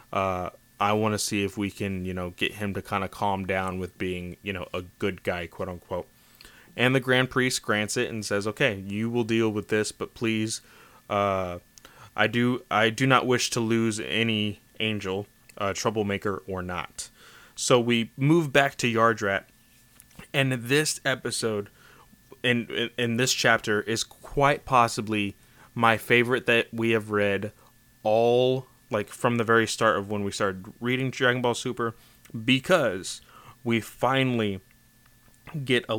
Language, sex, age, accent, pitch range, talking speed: English, male, 20-39, American, 105-125 Hz, 165 wpm